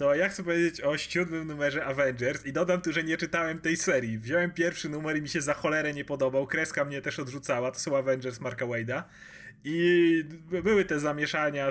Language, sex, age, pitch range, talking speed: Polish, male, 30-49, 140-175 Hz, 200 wpm